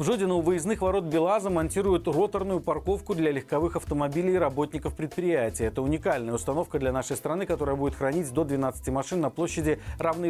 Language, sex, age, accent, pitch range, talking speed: Russian, male, 40-59, native, 140-185 Hz, 175 wpm